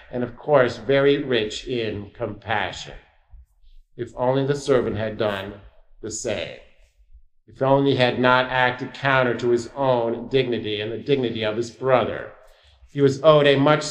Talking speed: 160 wpm